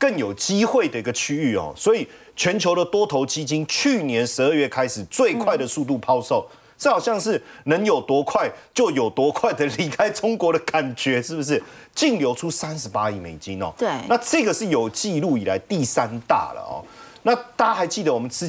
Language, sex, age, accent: Chinese, male, 30-49, native